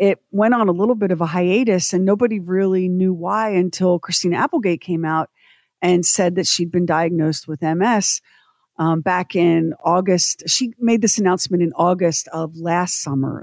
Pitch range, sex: 160-200 Hz, female